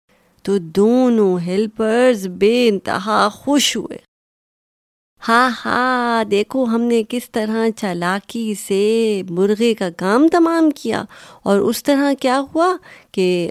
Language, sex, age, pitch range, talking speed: Urdu, female, 30-49, 175-240 Hz, 120 wpm